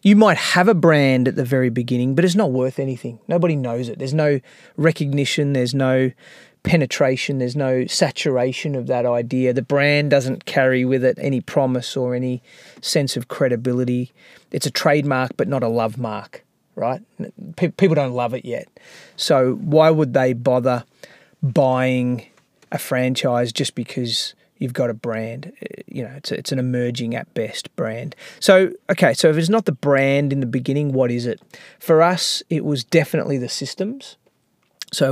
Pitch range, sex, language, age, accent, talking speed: 125-155 Hz, male, English, 30-49, Australian, 175 wpm